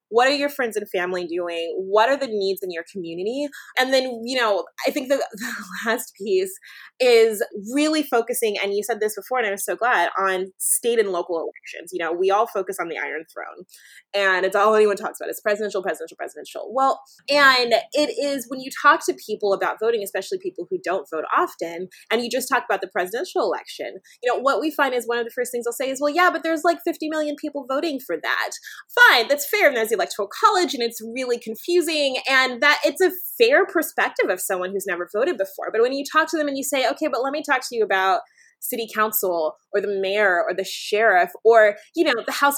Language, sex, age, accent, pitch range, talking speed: English, female, 20-39, American, 195-285 Hz, 230 wpm